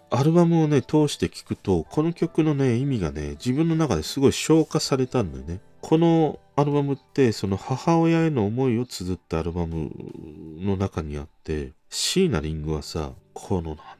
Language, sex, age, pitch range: Japanese, male, 40-59, 80-130 Hz